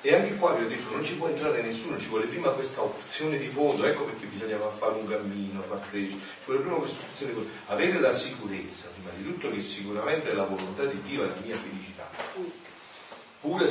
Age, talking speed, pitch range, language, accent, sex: 40-59, 215 wpm, 100-160 Hz, Italian, native, male